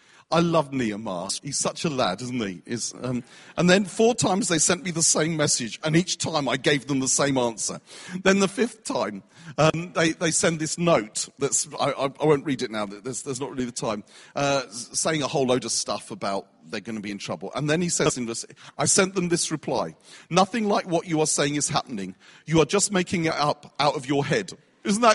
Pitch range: 150-210 Hz